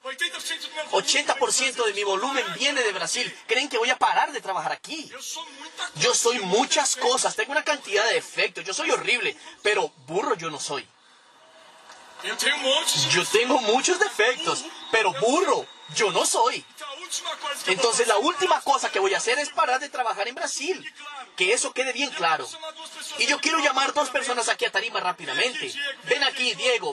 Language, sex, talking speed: Portuguese, male, 165 wpm